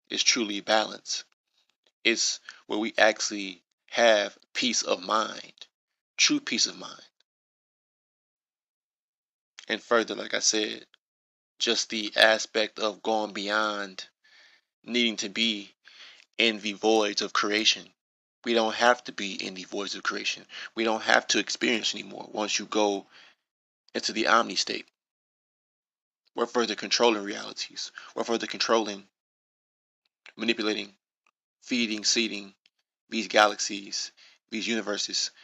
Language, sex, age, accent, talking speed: English, male, 20-39, American, 120 wpm